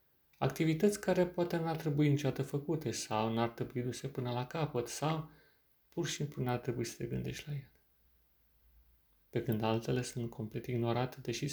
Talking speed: 160 wpm